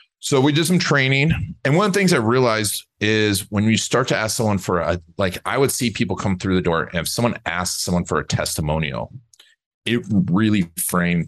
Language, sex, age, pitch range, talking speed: English, male, 40-59, 95-140 Hz, 220 wpm